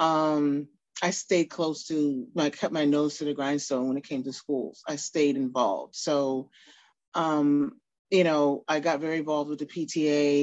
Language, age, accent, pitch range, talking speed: English, 30-49, American, 140-160 Hz, 180 wpm